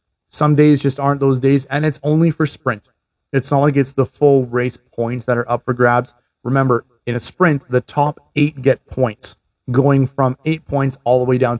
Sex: male